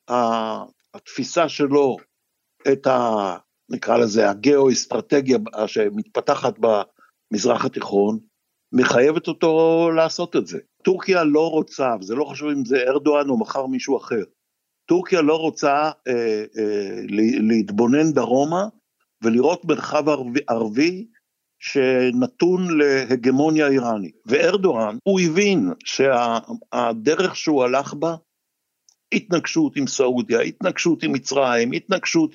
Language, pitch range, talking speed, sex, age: Hebrew, 125-165 Hz, 105 wpm, male, 60-79